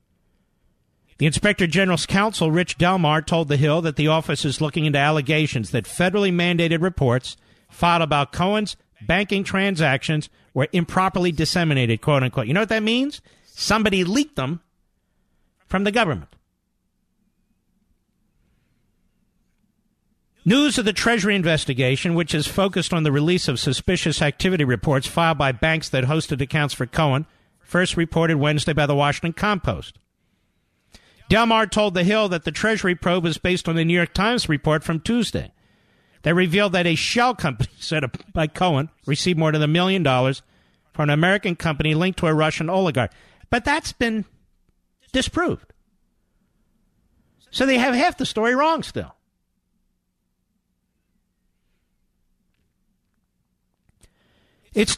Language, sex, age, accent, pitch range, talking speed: English, male, 50-69, American, 145-195 Hz, 140 wpm